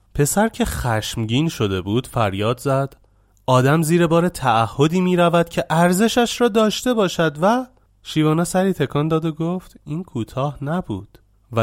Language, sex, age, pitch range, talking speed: Persian, male, 30-49, 105-160 Hz, 145 wpm